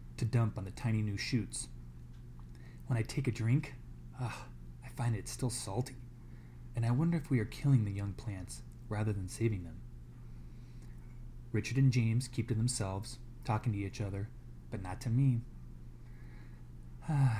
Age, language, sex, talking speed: 20-39, English, male, 160 wpm